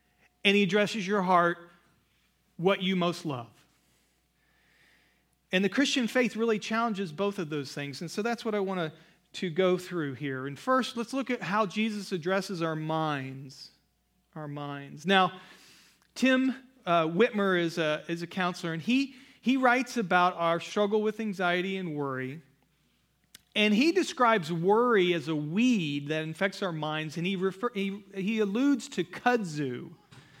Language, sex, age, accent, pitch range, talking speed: English, male, 40-59, American, 160-215 Hz, 160 wpm